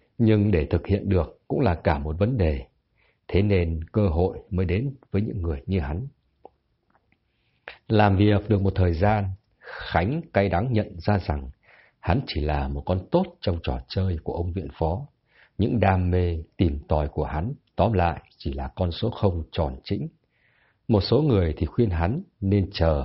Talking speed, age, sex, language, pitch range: 185 wpm, 60-79, male, Vietnamese, 85-110 Hz